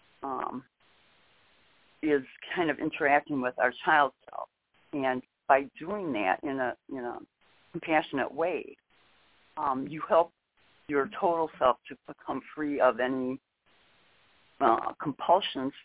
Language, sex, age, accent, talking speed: English, female, 60-79, American, 120 wpm